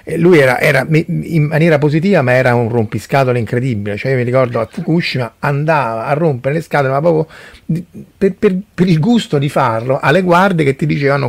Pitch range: 115-155 Hz